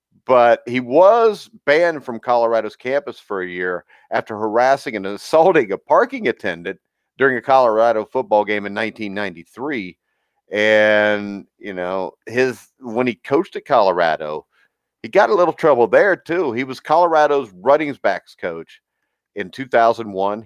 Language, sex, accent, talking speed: English, male, American, 140 wpm